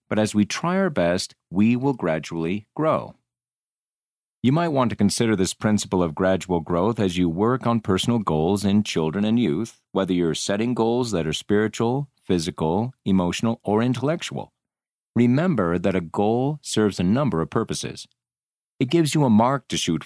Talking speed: 170 wpm